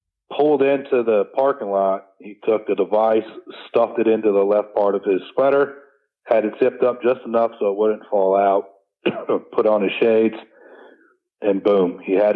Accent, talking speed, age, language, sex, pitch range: American, 180 wpm, 40-59, English, male, 95-125 Hz